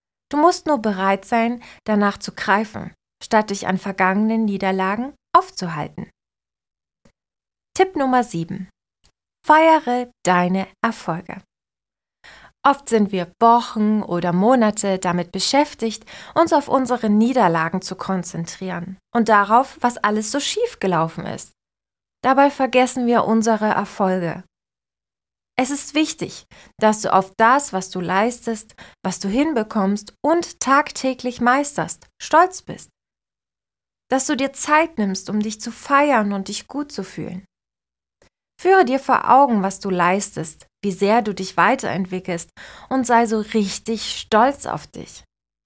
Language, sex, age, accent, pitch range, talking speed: German, female, 20-39, German, 190-255 Hz, 130 wpm